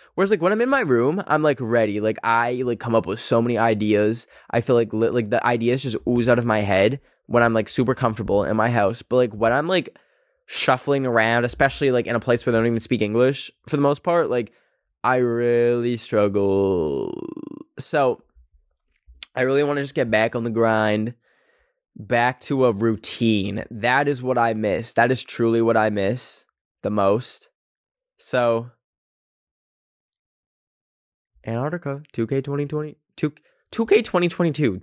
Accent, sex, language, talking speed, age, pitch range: American, male, English, 175 wpm, 10-29, 115-185 Hz